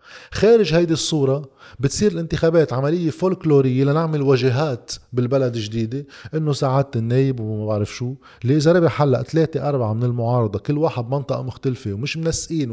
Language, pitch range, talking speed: Arabic, 115-140 Hz, 135 wpm